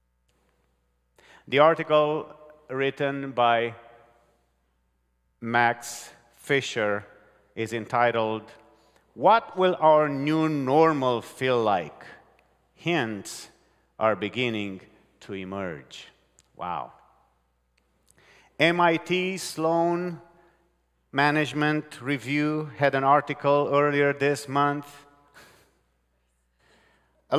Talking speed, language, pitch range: 70 wpm, English, 125-170 Hz